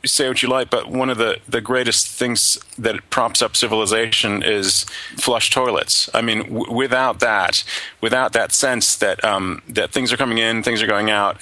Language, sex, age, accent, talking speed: English, male, 30-49, American, 195 wpm